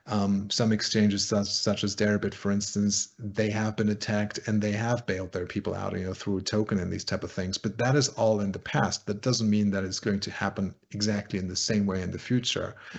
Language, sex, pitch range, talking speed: English, male, 95-110 Hz, 245 wpm